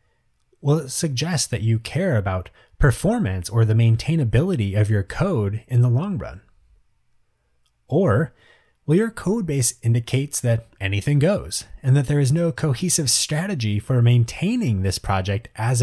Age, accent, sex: 30-49, American, male